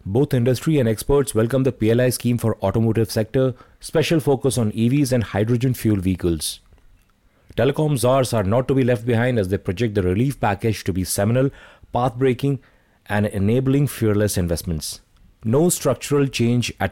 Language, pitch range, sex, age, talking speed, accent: English, 100-130 Hz, male, 30-49, 160 wpm, Indian